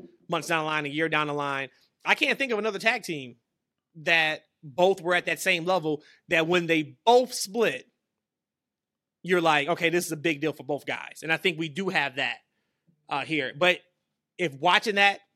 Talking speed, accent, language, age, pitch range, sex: 205 wpm, American, English, 30-49, 155-205 Hz, male